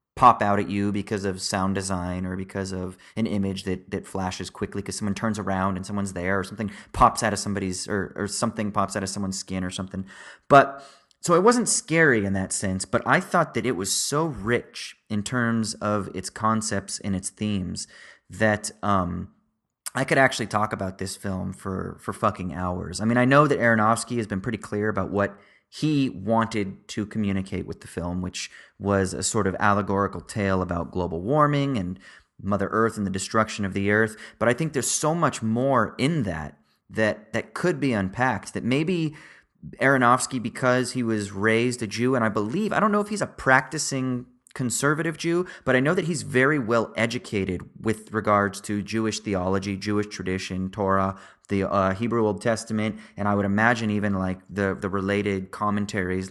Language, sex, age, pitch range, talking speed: English, male, 30-49, 95-120 Hz, 195 wpm